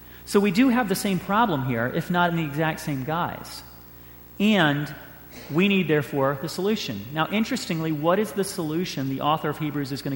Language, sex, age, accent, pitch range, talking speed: English, male, 40-59, American, 115-180 Hz, 195 wpm